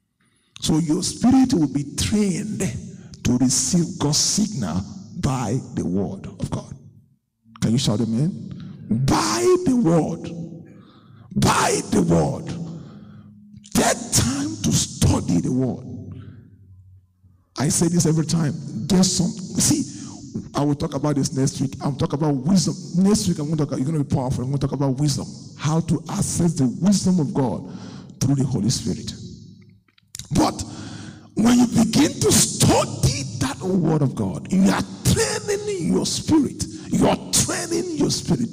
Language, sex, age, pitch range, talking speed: English, male, 50-69, 130-185 Hz, 155 wpm